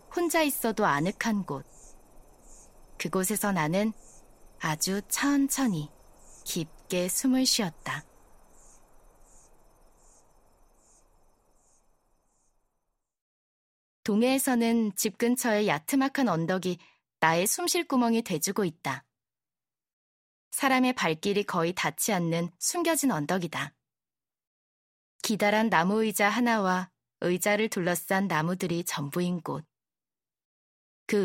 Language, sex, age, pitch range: Korean, female, 20-39, 165-235 Hz